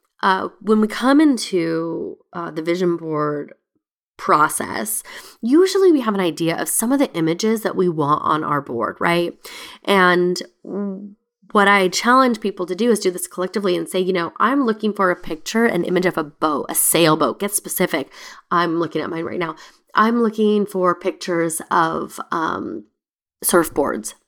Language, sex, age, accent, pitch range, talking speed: English, female, 20-39, American, 175-235 Hz, 170 wpm